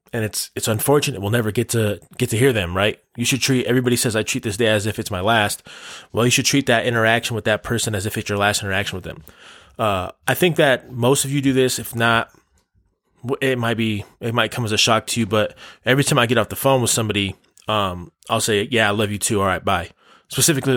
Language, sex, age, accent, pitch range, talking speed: English, male, 20-39, American, 105-125 Hz, 255 wpm